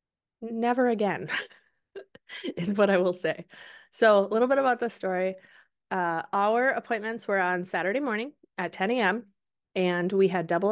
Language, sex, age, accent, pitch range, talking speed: English, female, 20-39, American, 175-215 Hz, 155 wpm